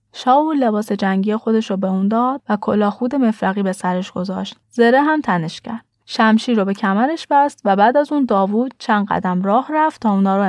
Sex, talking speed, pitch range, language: female, 205 wpm, 190-260 Hz, Persian